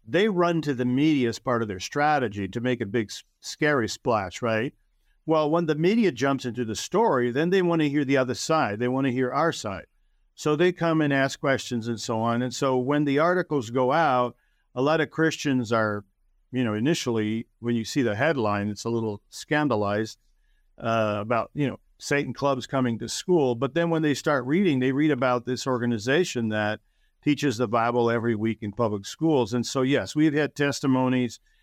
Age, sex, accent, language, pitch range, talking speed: 50-69, male, American, English, 115-150 Hz, 205 wpm